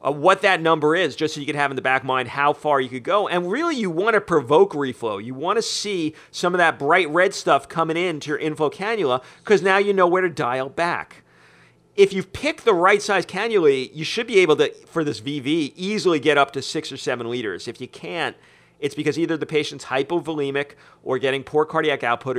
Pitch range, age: 125-160 Hz, 40-59